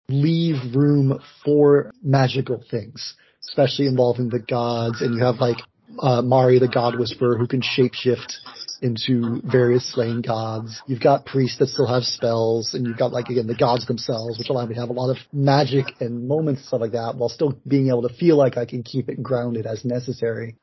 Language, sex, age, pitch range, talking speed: English, male, 30-49, 120-135 Hz, 200 wpm